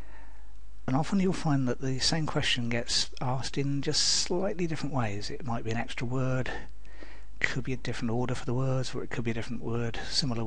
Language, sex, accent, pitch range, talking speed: English, male, British, 115-130 Hz, 210 wpm